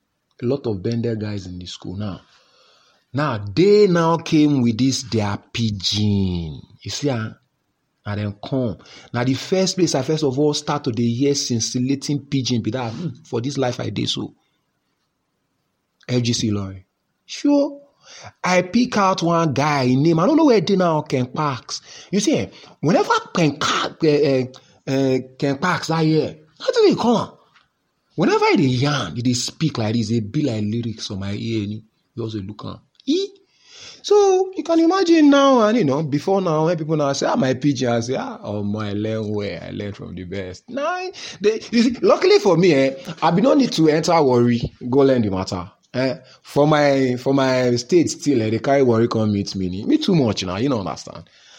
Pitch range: 115-170 Hz